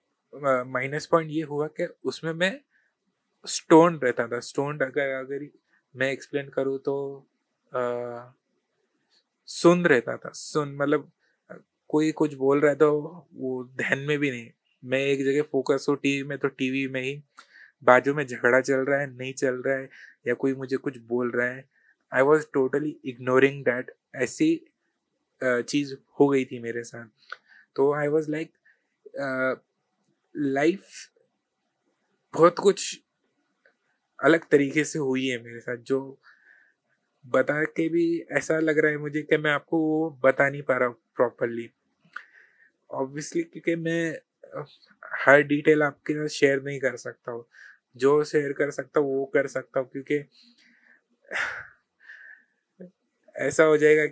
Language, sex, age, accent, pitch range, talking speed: Hindi, male, 20-39, native, 130-155 Hz, 140 wpm